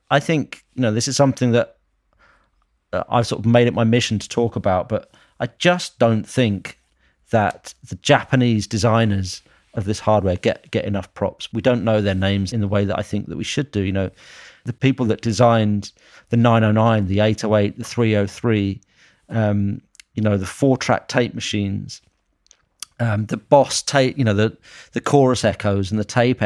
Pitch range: 100-120 Hz